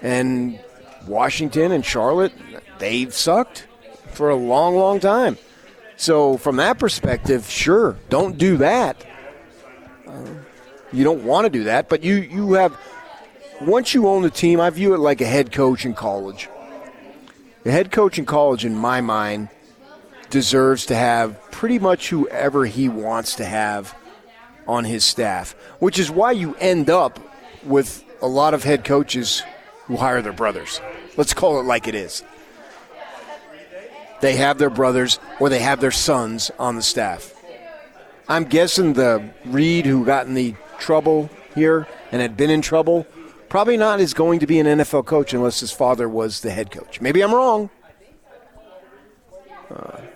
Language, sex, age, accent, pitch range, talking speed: English, male, 40-59, American, 125-170 Hz, 160 wpm